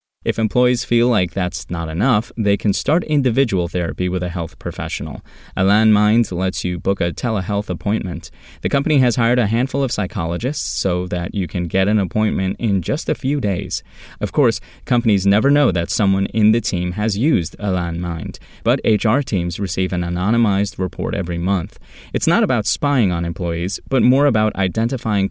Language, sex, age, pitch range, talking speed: English, male, 20-39, 90-115 Hz, 185 wpm